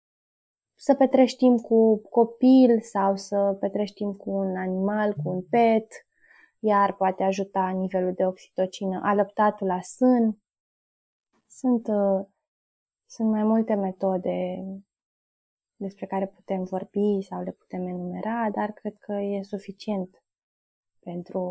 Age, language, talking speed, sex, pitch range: 20-39, Romanian, 115 wpm, female, 195-230 Hz